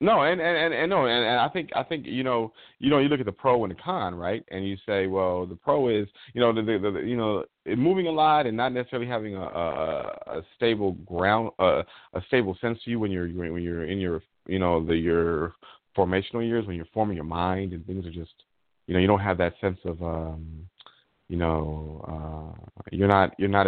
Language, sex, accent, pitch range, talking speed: English, male, American, 85-105 Hz, 245 wpm